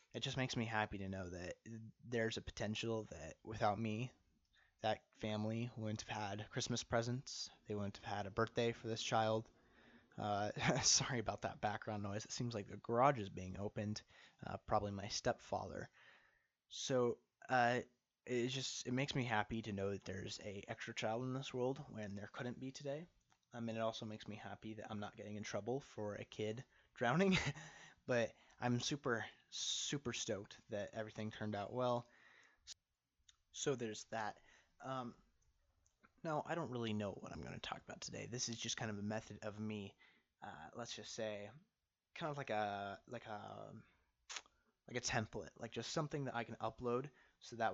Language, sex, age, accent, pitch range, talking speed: English, male, 20-39, American, 105-125 Hz, 185 wpm